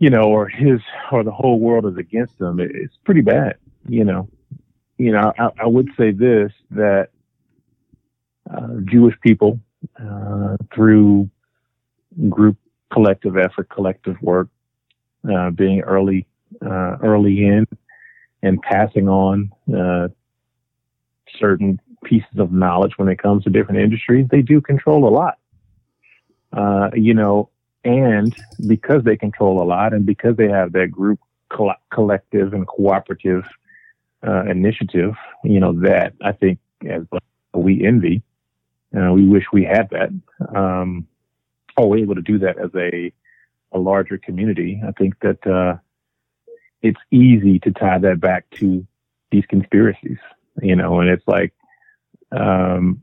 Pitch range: 95-115 Hz